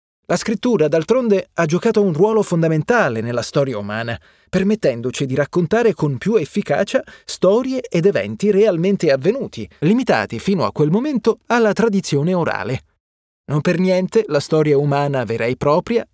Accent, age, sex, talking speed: native, 30-49, male, 145 wpm